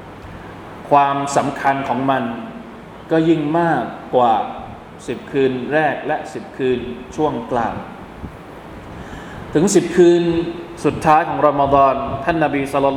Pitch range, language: 120-145 Hz, Thai